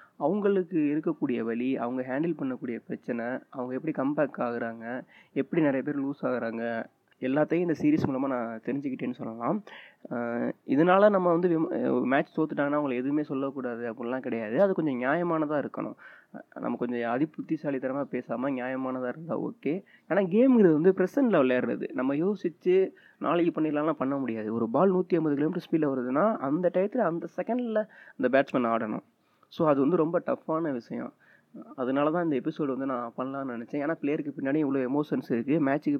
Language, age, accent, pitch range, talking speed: Tamil, 20-39, native, 125-165 Hz, 150 wpm